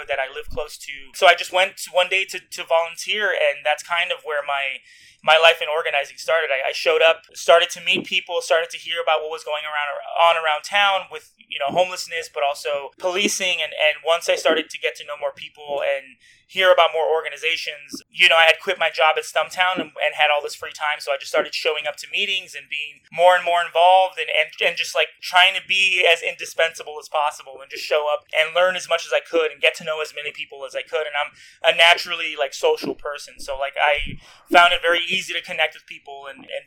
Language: English